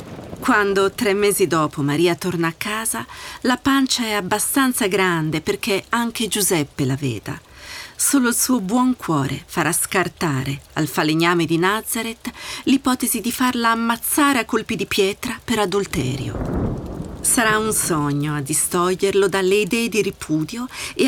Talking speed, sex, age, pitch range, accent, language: 140 wpm, female, 40-59, 175-265 Hz, native, Italian